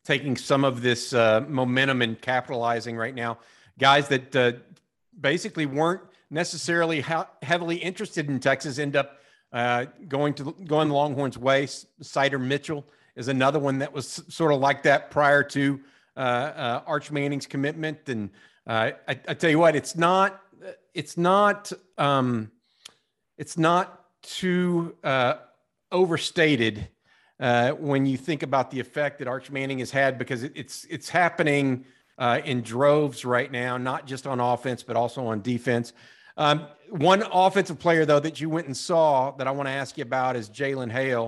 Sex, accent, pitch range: male, American, 125-155 Hz